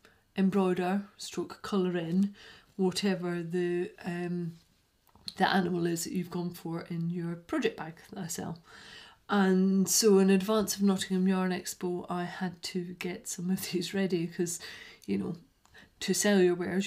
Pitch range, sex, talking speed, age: 170-190 Hz, female, 155 wpm, 40-59